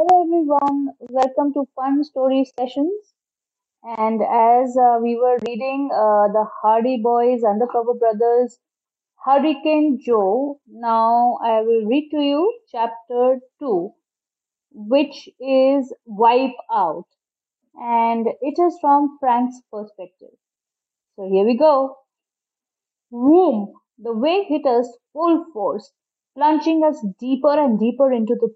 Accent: Indian